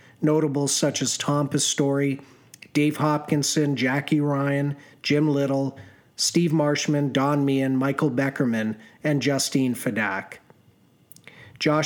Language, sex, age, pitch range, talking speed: English, male, 40-59, 130-155 Hz, 105 wpm